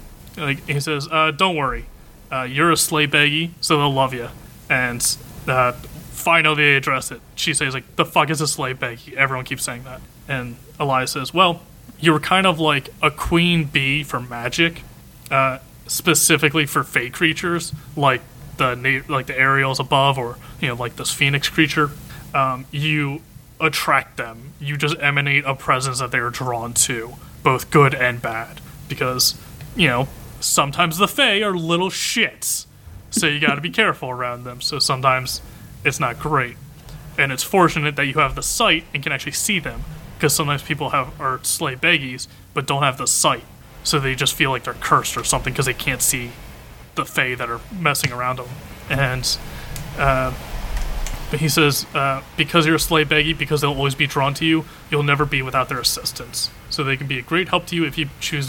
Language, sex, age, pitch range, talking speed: English, male, 30-49, 130-155 Hz, 190 wpm